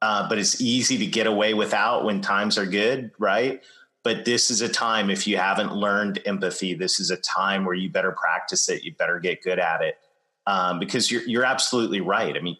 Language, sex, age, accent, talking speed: English, male, 30-49, American, 220 wpm